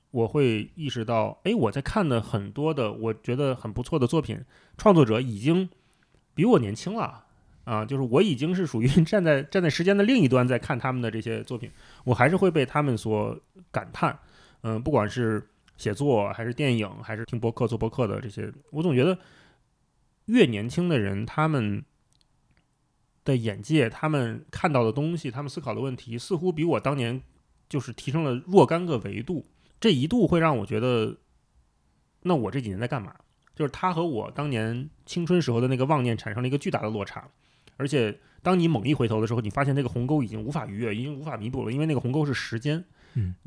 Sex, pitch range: male, 115-155 Hz